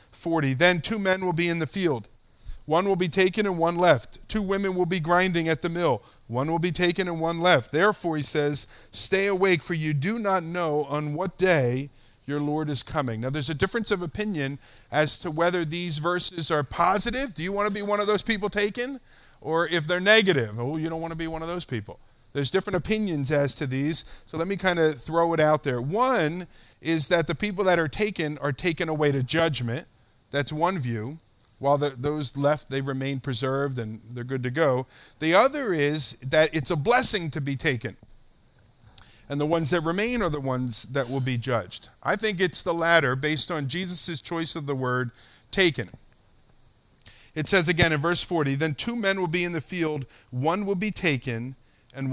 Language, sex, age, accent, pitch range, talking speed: English, male, 50-69, American, 130-180 Hz, 210 wpm